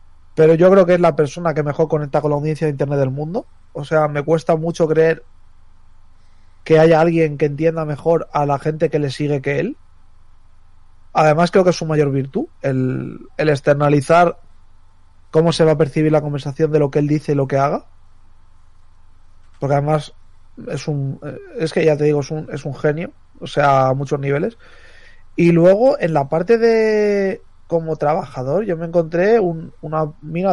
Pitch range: 100-165 Hz